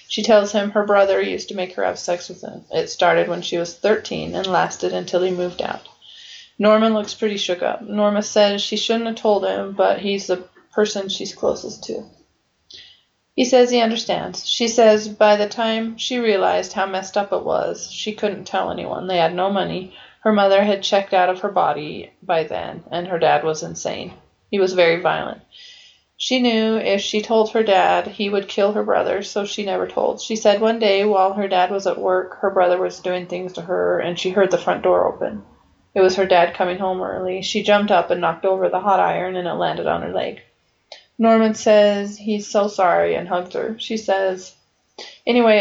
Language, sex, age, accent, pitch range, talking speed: English, female, 30-49, American, 185-215 Hz, 210 wpm